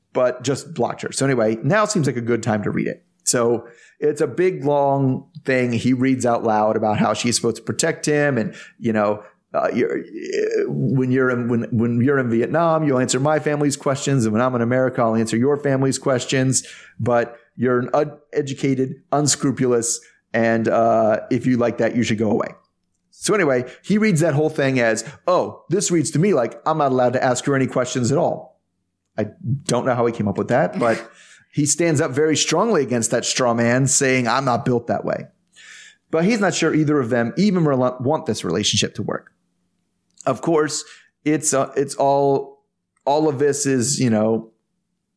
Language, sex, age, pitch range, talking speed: English, male, 30-49, 120-155 Hz, 200 wpm